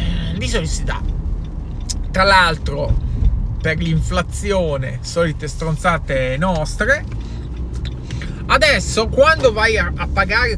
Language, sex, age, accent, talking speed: Italian, male, 30-49, native, 80 wpm